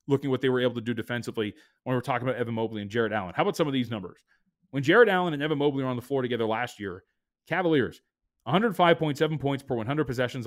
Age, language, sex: 30-49, English, male